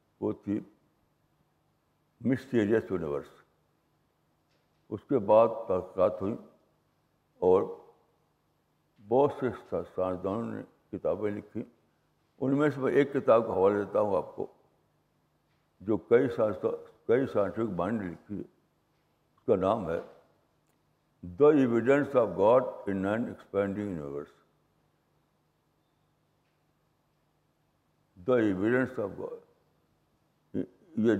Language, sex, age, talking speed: Urdu, male, 60-79, 90 wpm